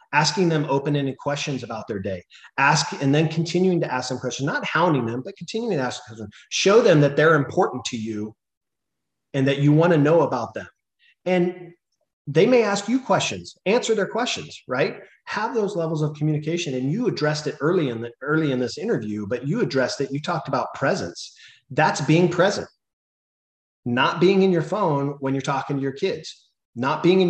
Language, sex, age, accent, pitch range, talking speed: English, male, 40-59, American, 125-165 Hz, 190 wpm